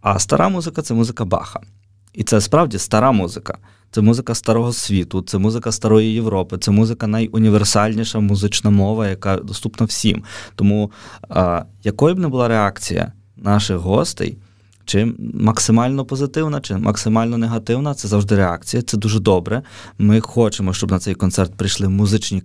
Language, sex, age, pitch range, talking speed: Ukrainian, male, 20-39, 100-115 Hz, 145 wpm